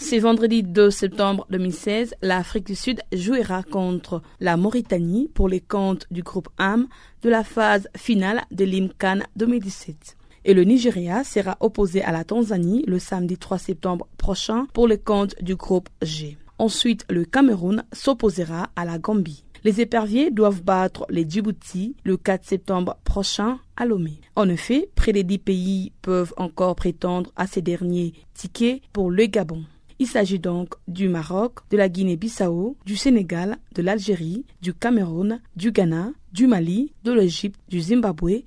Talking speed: 160 wpm